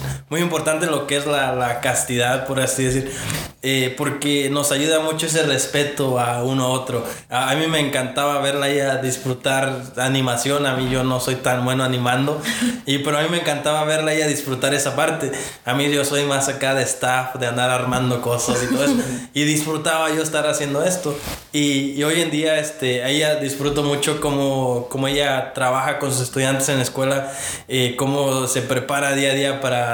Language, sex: English, male